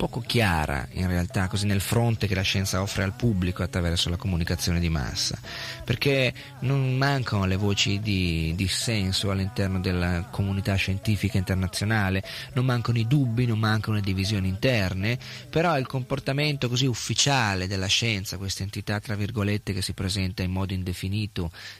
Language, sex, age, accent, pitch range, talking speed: Italian, male, 30-49, native, 95-115 Hz, 155 wpm